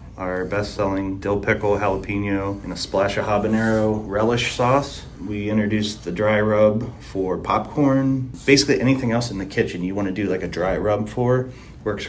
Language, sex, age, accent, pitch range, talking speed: English, male, 30-49, American, 100-125 Hz, 175 wpm